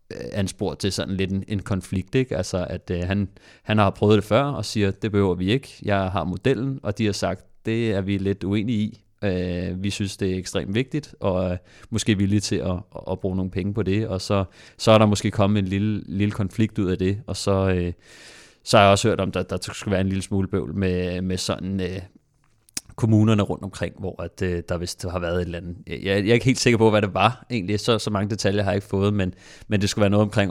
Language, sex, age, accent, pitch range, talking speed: Danish, male, 30-49, native, 90-105 Hz, 260 wpm